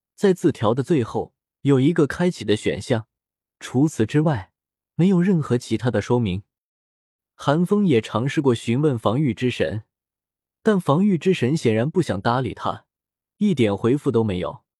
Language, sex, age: Chinese, male, 20-39